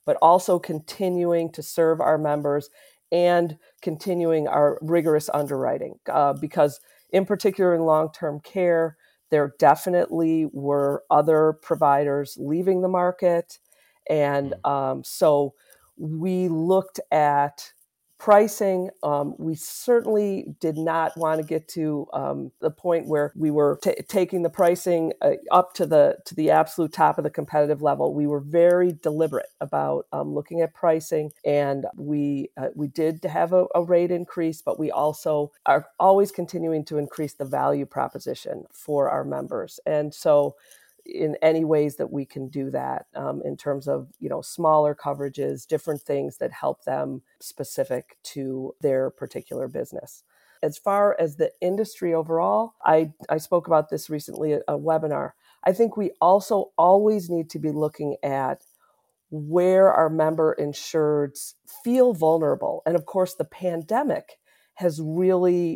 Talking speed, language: 150 wpm, English